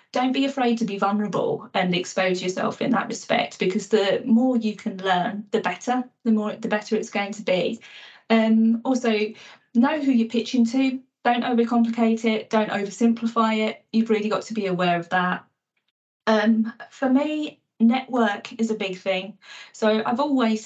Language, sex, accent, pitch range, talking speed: English, female, British, 210-245 Hz, 175 wpm